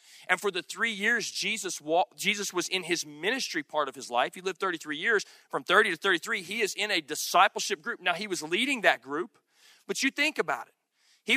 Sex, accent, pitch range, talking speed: male, American, 180-230 Hz, 220 wpm